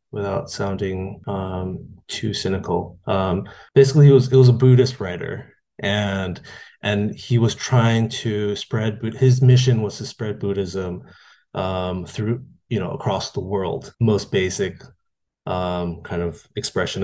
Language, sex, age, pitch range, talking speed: English, male, 20-39, 95-120 Hz, 135 wpm